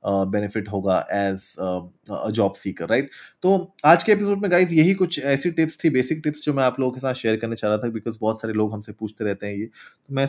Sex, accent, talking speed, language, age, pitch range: male, native, 245 wpm, Hindi, 20-39, 110-145 Hz